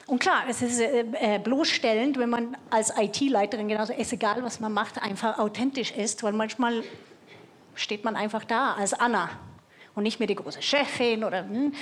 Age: 30-49